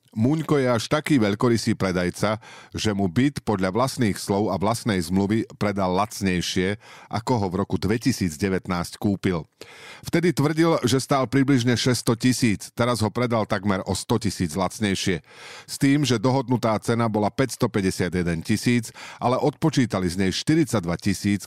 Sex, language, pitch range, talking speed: male, Slovak, 95-130 Hz, 145 wpm